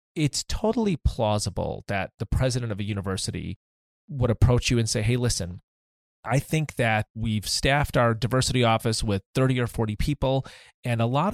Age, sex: 30-49, male